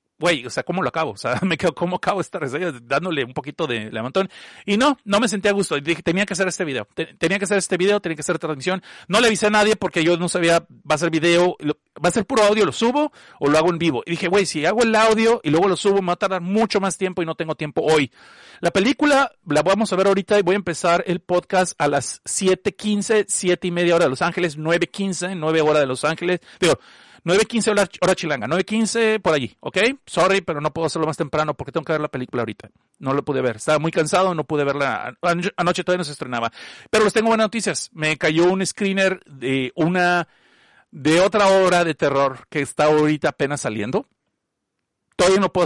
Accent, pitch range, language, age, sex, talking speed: Mexican, 150-195 Hz, Spanish, 40-59, male, 235 wpm